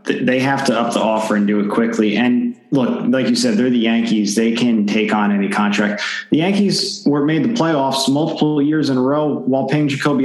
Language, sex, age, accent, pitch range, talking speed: English, male, 30-49, American, 110-150 Hz, 225 wpm